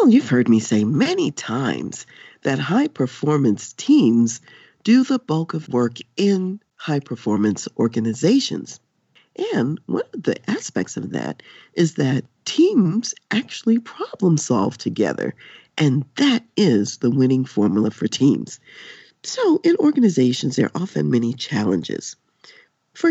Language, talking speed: English, 125 wpm